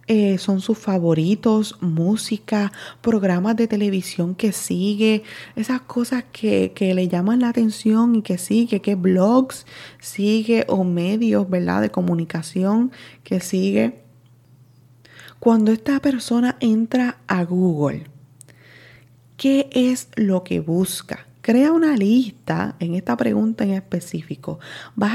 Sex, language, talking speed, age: female, Spanish, 120 wpm, 20-39